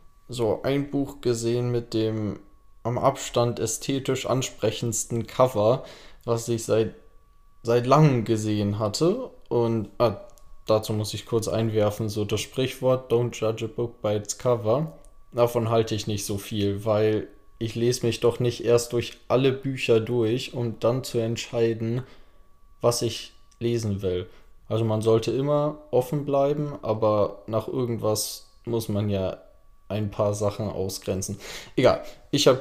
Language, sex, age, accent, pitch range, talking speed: English, male, 20-39, German, 105-125 Hz, 145 wpm